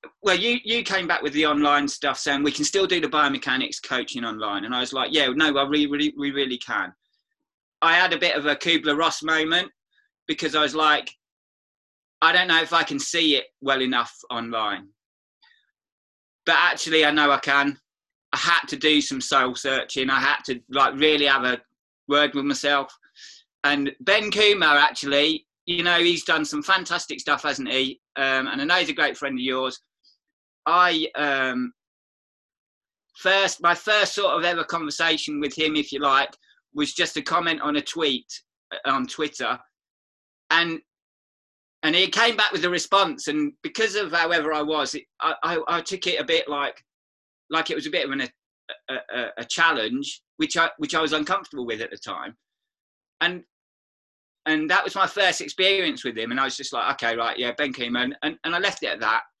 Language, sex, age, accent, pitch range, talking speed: English, male, 20-39, British, 140-180 Hz, 195 wpm